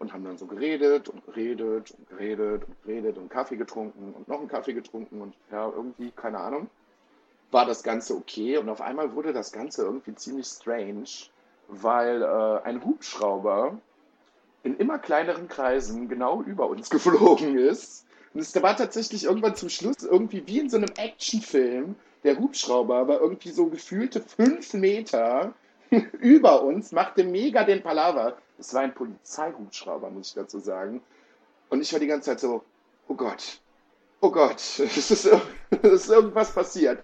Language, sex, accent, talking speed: German, male, German, 165 wpm